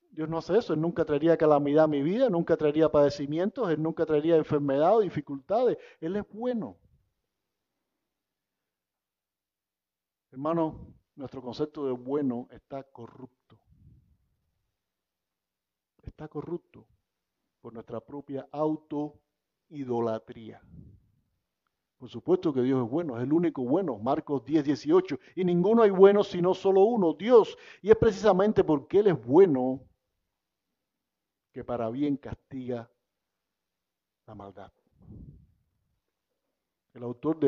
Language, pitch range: Spanish, 125-175 Hz